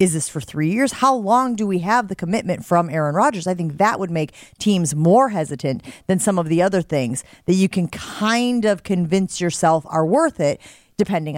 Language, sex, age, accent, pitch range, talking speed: English, female, 30-49, American, 155-220 Hz, 210 wpm